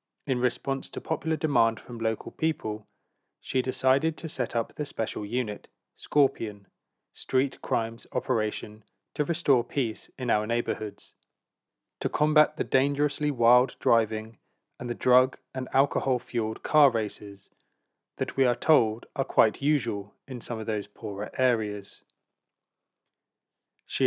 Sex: male